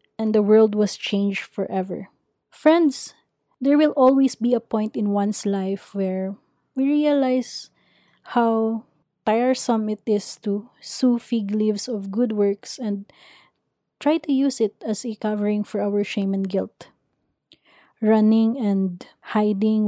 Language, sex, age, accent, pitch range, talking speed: English, female, 20-39, Filipino, 205-245 Hz, 140 wpm